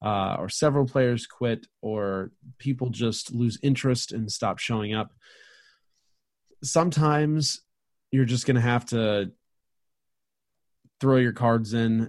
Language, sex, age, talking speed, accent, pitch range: English, male, 30-49, 125 wpm, American, 110-130 Hz